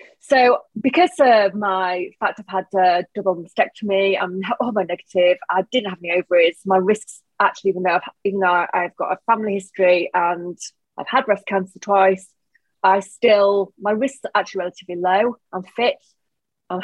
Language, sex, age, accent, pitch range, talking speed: English, female, 30-49, British, 185-215 Hz, 170 wpm